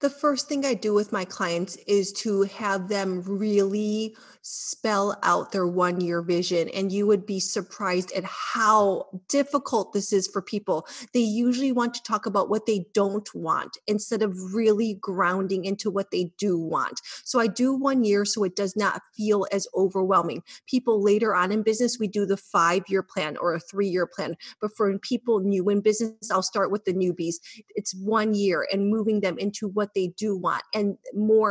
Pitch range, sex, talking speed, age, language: 190-220 Hz, female, 190 wpm, 30-49, English